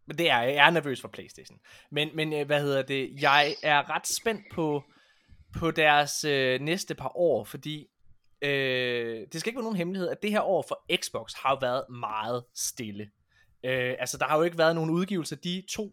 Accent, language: native, Danish